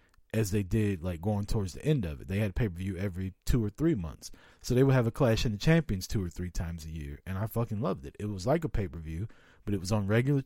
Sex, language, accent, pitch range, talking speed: male, English, American, 95-115 Hz, 275 wpm